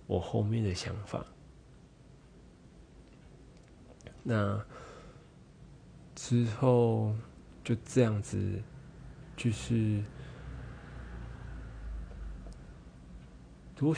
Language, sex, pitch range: Chinese, male, 90-120 Hz